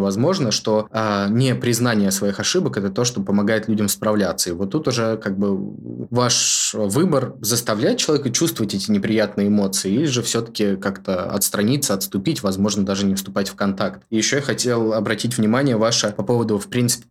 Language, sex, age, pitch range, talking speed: Russian, male, 20-39, 100-120 Hz, 175 wpm